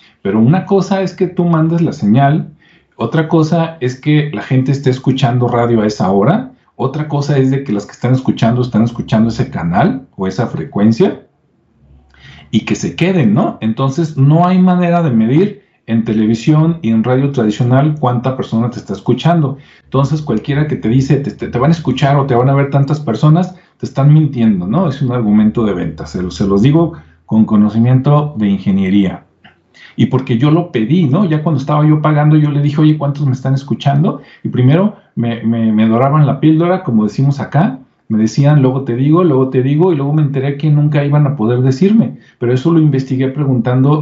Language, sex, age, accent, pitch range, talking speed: Spanish, male, 40-59, Mexican, 115-155 Hz, 200 wpm